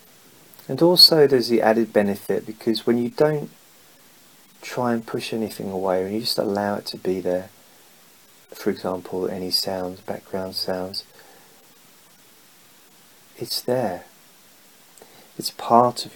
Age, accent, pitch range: 30-49, British, 100-115 Hz